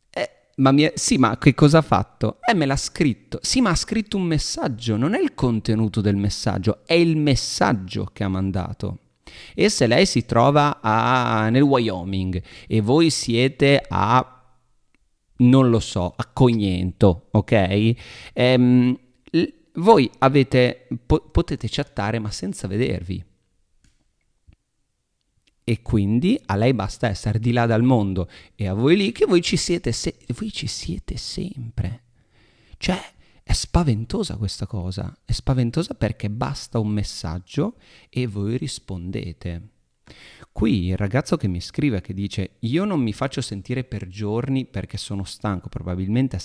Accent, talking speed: native, 135 wpm